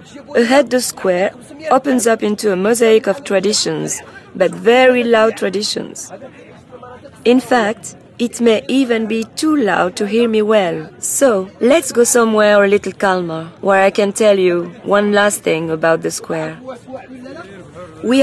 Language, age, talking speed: English, 30-49, 150 wpm